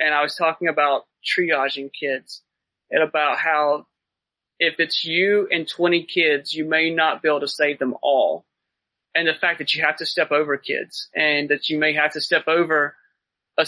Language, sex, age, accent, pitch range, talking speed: English, male, 30-49, American, 150-180 Hz, 195 wpm